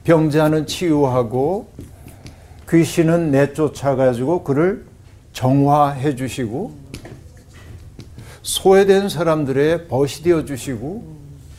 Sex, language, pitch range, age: male, Korean, 125-175 Hz, 60-79